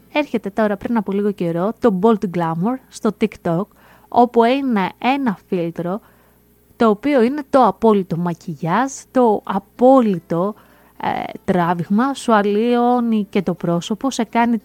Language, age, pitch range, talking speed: Greek, 20-39, 205-260 Hz, 130 wpm